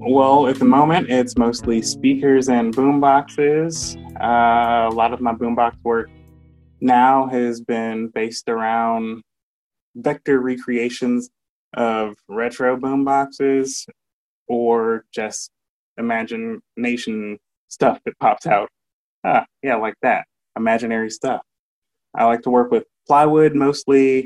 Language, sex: English, male